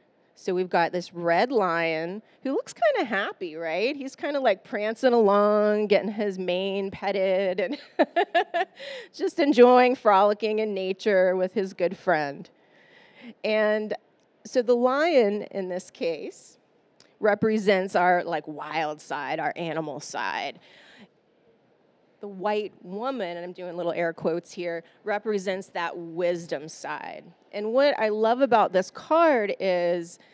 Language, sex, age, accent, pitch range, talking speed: English, female, 30-49, American, 185-255 Hz, 135 wpm